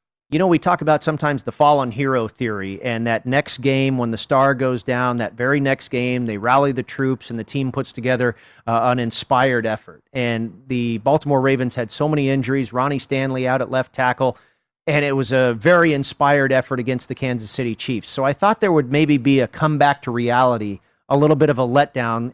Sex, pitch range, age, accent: male, 120-145 Hz, 40-59, American